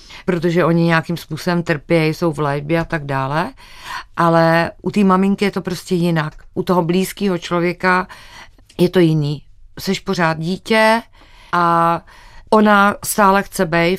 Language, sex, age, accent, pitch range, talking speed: Czech, female, 50-69, native, 155-180 Hz, 145 wpm